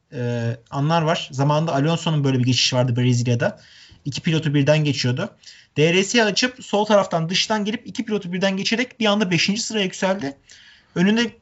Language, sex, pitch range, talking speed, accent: Turkish, male, 150-205 Hz, 160 wpm, native